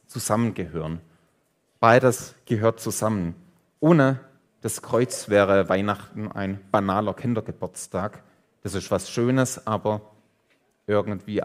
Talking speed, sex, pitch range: 95 wpm, male, 100-135 Hz